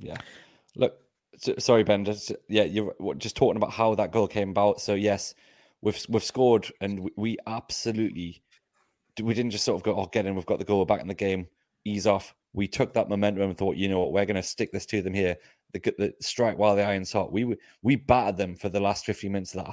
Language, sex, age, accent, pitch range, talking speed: English, male, 30-49, British, 95-110 Hz, 240 wpm